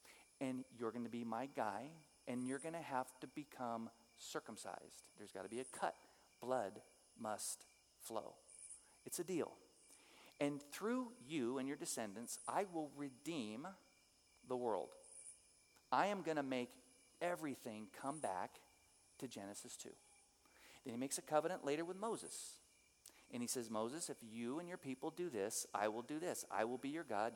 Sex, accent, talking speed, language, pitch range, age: male, American, 170 wpm, English, 115-155 Hz, 40-59